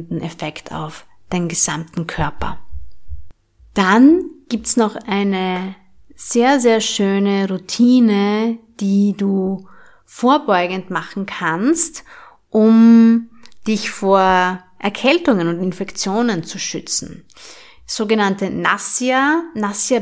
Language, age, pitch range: German, 30-49, 180-225 Hz